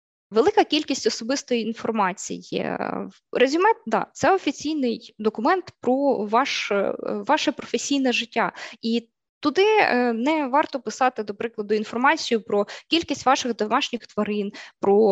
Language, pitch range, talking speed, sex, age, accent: Ukrainian, 215-265 Hz, 115 wpm, female, 20-39, native